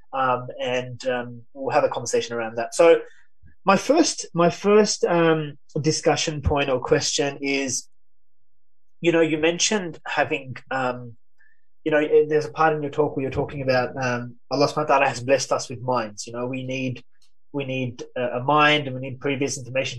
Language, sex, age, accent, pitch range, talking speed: English, male, 20-39, Australian, 130-165 Hz, 185 wpm